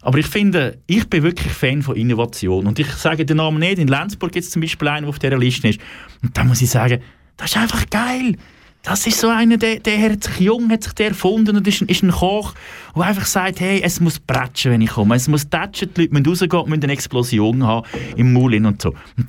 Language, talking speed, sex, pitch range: German, 245 wpm, male, 130-195 Hz